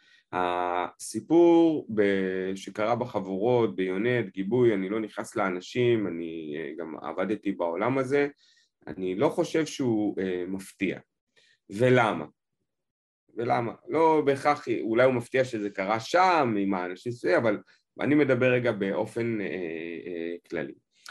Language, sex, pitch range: Hebrew, male, 95-140 Hz